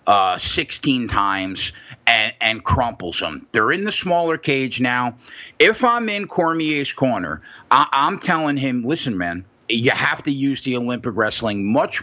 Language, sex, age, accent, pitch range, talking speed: English, male, 50-69, American, 120-165 Hz, 155 wpm